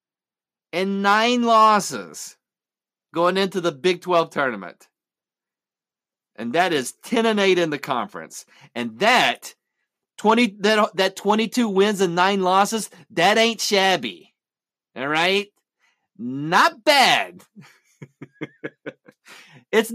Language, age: English, 40-59